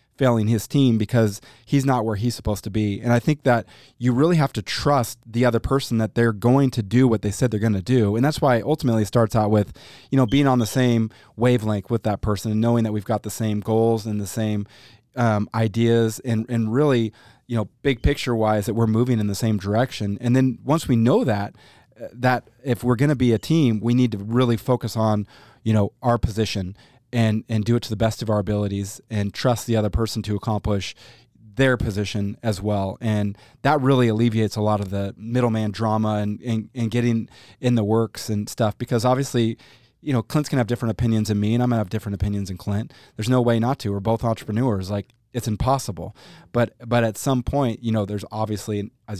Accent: American